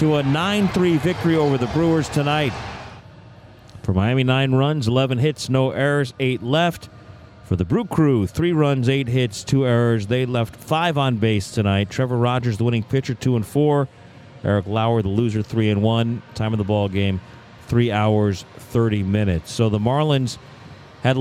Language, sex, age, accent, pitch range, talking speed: English, male, 40-59, American, 105-135 Hz, 175 wpm